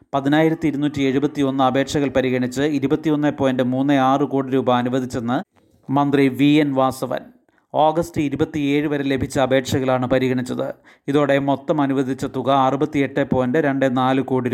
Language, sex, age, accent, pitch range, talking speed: Malayalam, male, 30-49, native, 135-145 Hz, 120 wpm